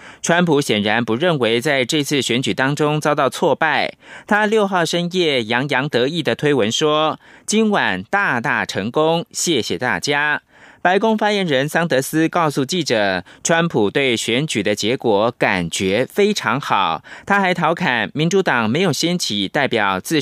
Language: German